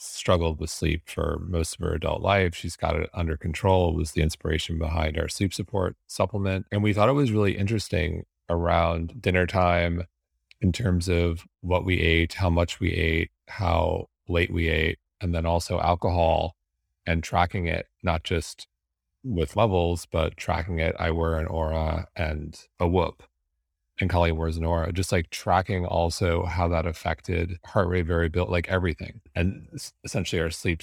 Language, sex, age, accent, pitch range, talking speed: English, male, 30-49, American, 80-95 Hz, 170 wpm